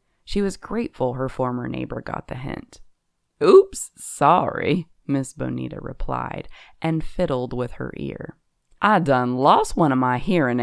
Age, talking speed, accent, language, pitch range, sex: 20-39, 145 wpm, American, English, 120-195 Hz, female